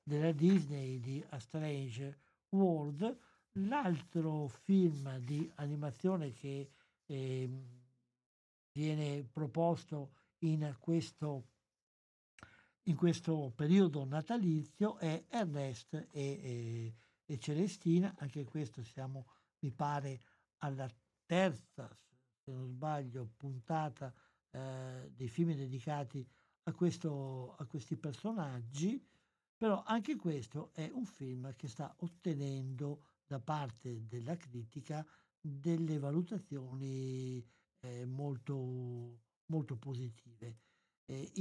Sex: male